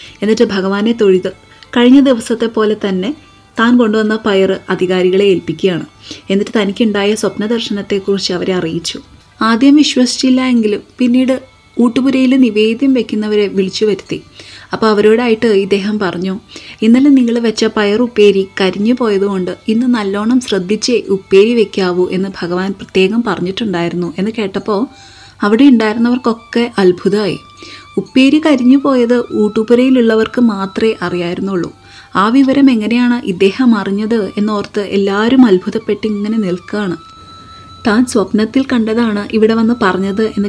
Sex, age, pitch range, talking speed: female, 30-49, 190-235 Hz, 110 wpm